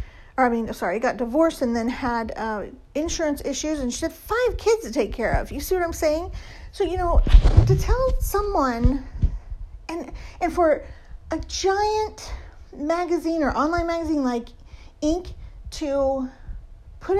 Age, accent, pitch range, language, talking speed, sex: 40-59, American, 245-345 Hz, English, 155 wpm, female